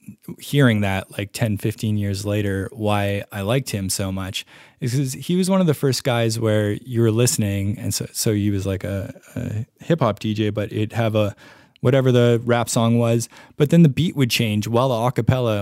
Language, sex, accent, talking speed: English, male, American, 205 wpm